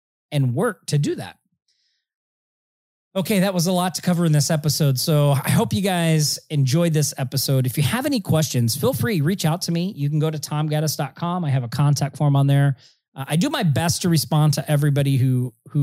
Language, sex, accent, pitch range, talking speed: English, male, American, 135-160 Hz, 215 wpm